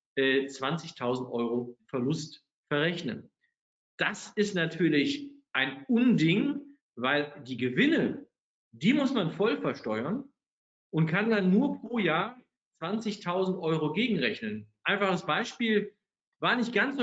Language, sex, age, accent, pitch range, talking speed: German, male, 50-69, German, 145-215 Hz, 110 wpm